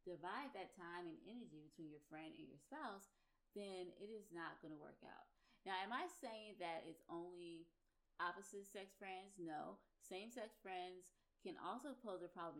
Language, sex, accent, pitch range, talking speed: English, female, American, 165-215 Hz, 180 wpm